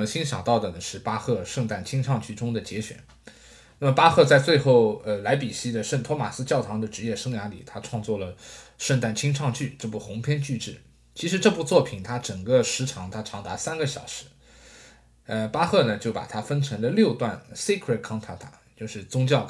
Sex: male